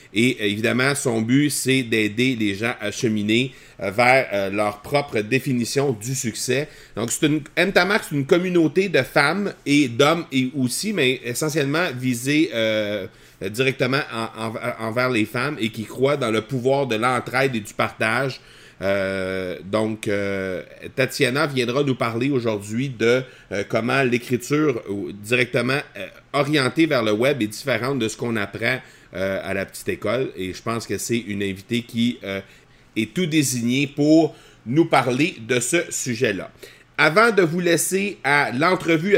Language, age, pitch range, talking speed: French, 40-59, 120-155 Hz, 155 wpm